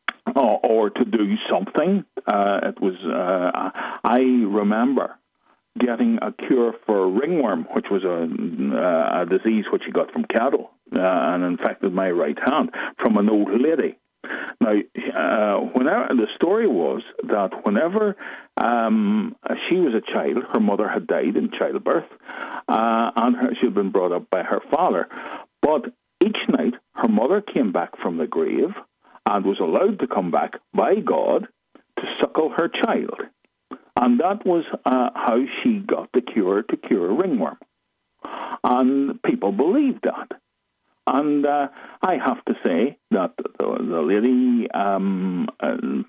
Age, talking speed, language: 50-69, 145 wpm, English